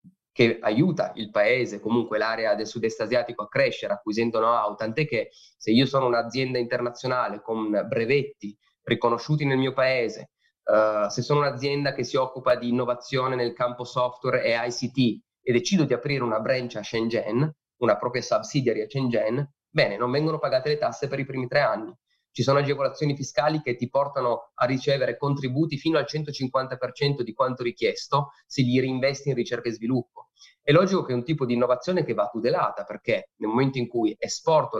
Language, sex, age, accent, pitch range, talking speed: Italian, male, 20-39, native, 115-140 Hz, 180 wpm